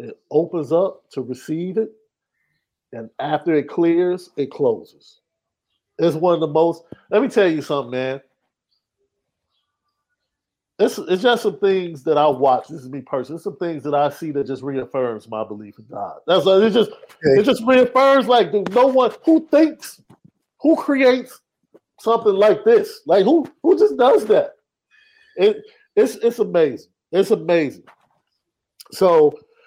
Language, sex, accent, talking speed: English, male, American, 155 wpm